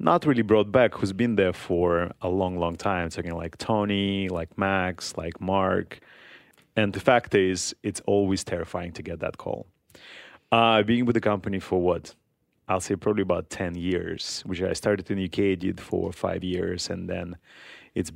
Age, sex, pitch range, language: 30-49, male, 90-105 Hz, English